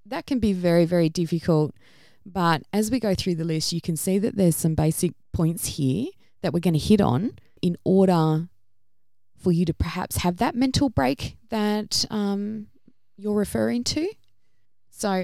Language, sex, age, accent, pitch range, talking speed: English, female, 20-39, Australian, 170-220 Hz, 175 wpm